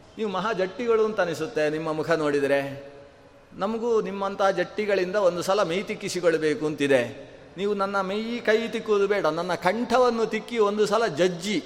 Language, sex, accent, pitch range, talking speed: Kannada, male, native, 165-215 Hz, 145 wpm